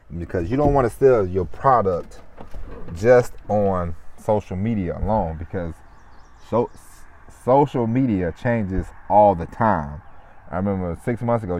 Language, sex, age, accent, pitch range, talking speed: English, male, 30-49, American, 85-110 Hz, 135 wpm